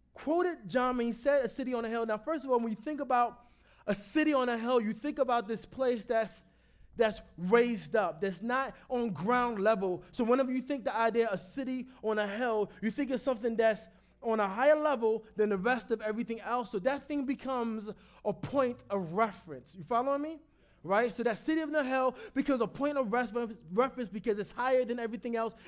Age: 20-39